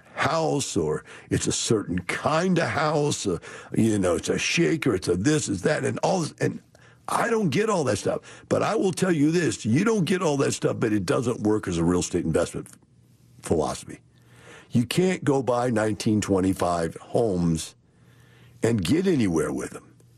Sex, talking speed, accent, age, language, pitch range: male, 185 wpm, American, 60-79, English, 95-145 Hz